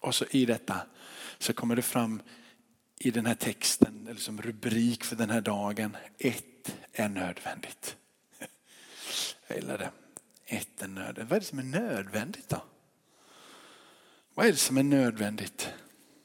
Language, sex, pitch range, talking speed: Swedish, male, 120-145 Hz, 150 wpm